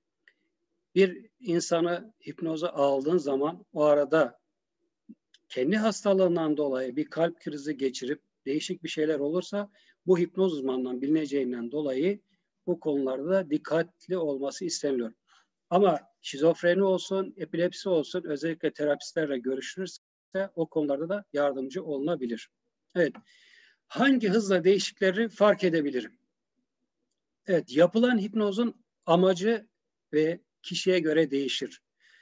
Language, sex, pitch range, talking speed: Turkish, male, 145-190 Hz, 100 wpm